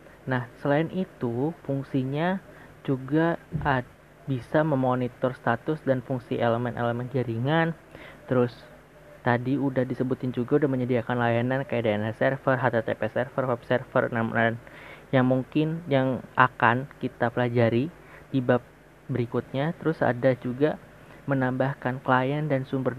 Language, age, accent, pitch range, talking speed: Indonesian, 20-39, native, 125-145 Hz, 115 wpm